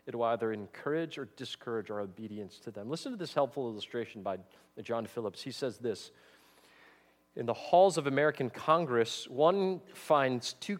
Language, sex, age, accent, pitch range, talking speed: English, male, 40-59, American, 105-165 Hz, 165 wpm